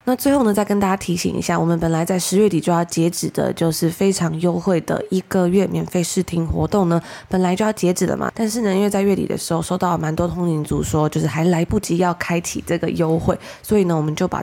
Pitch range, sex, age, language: 165-195 Hz, female, 20-39, Chinese